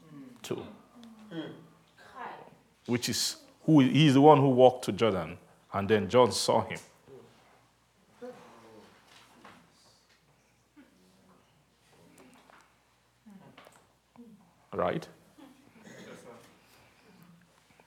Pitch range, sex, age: 115-180 Hz, male, 50-69